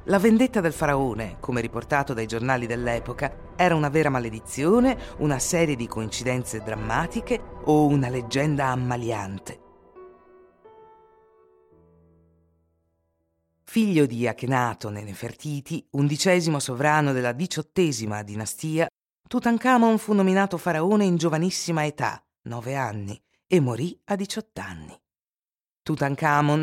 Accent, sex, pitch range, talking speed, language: native, female, 115-180 Hz, 105 wpm, Italian